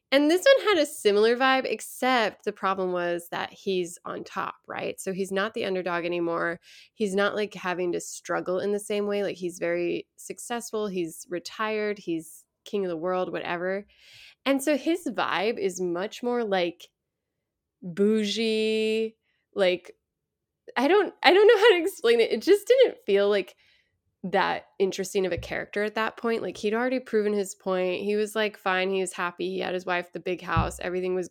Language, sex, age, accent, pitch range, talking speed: English, female, 20-39, American, 180-225 Hz, 190 wpm